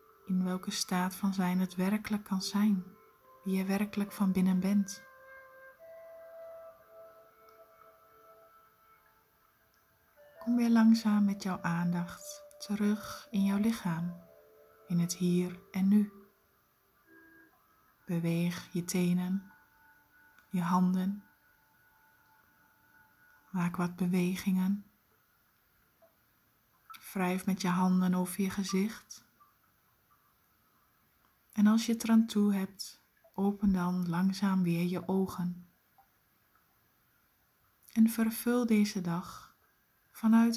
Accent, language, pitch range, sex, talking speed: Dutch, Dutch, 180-225 Hz, female, 95 wpm